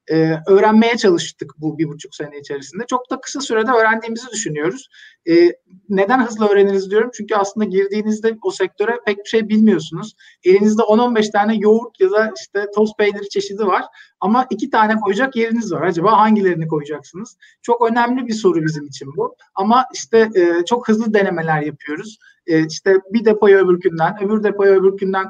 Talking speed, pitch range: 165 wpm, 185-225 Hz